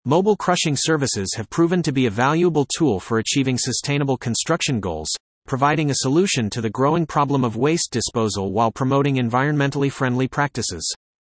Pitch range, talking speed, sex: 120-160 Hz, 160 wpm, male